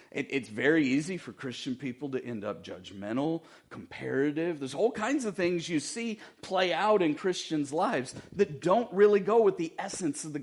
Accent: American